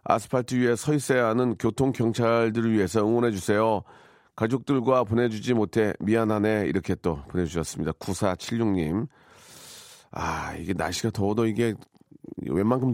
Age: 40-59